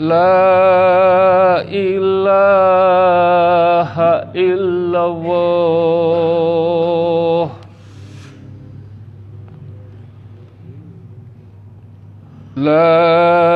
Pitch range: 130-190 Hz